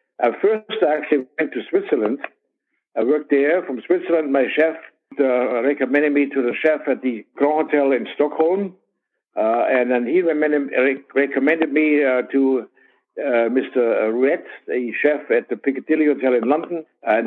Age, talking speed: 60-79, 165 wpm